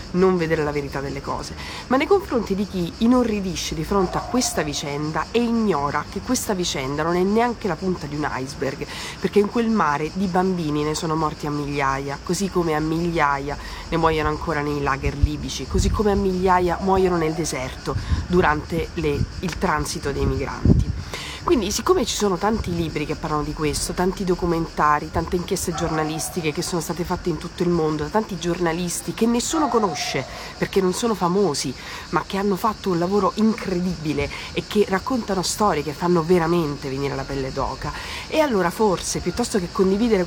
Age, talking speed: 30-49, 175 wpm